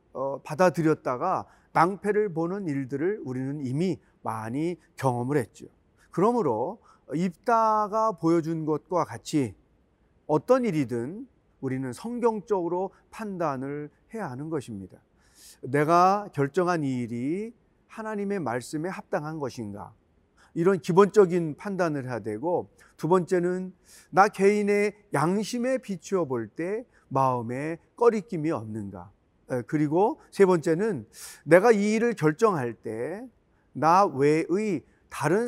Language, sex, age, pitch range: Korean, male, 40-59, 135-205 Hz